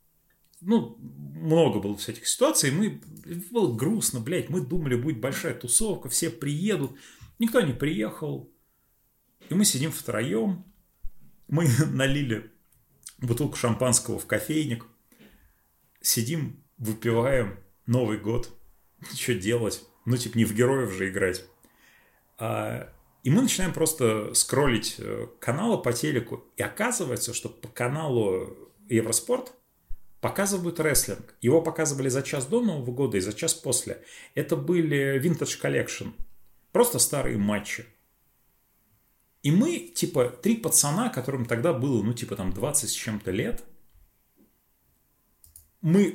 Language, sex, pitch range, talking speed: Russian, male, 115-160 Hz, 120 wpm